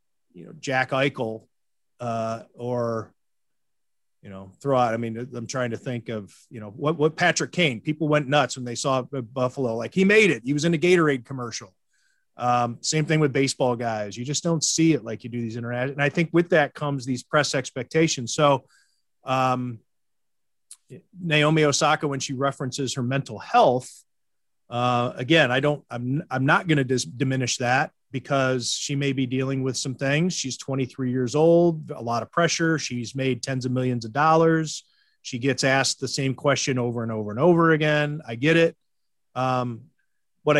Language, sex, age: English, male, 30-49